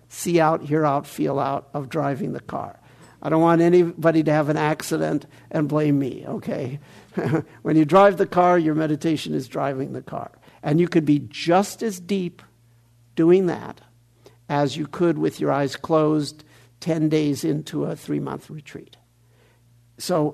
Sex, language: male, English